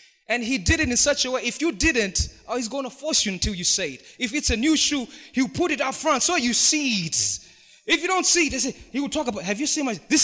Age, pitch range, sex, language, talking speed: 20-39, 185-295 Hz, male, English, 280 wpm